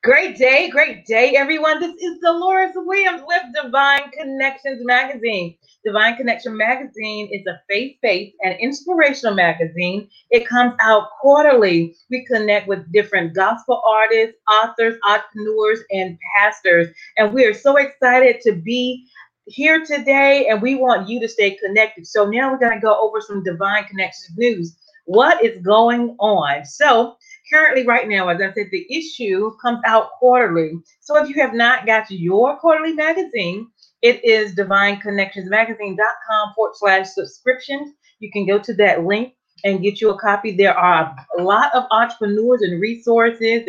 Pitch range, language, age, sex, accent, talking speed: 200-260 Hz, English, 30-49, female, American, 155 wpm